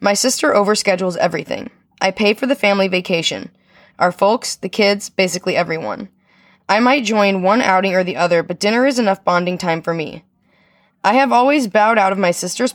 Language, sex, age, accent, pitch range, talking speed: English, female, 10-29, American, 170-210 Hz, 190 wpm